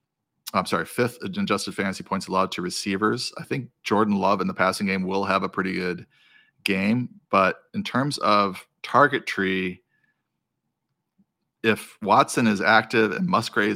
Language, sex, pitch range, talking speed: English, male, 95-115 Hz, 155 wpm